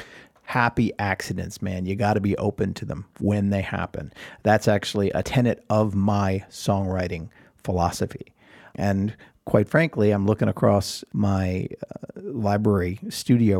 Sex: male